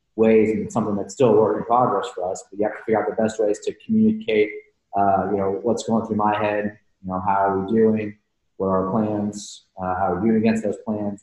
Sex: male